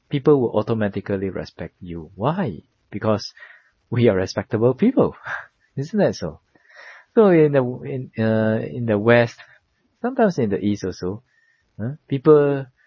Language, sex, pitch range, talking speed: English, male, 90-125 Hz, 135 wpm